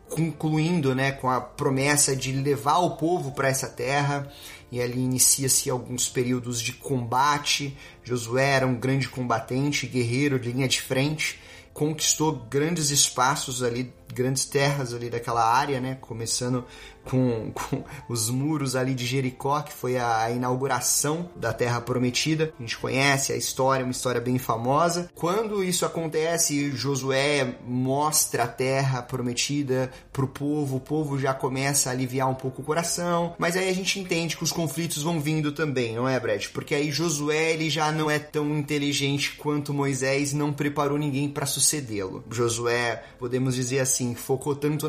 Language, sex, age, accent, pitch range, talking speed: Portuguese, male, 30-49, Brazilian, 125-145 Hz, 160 wpm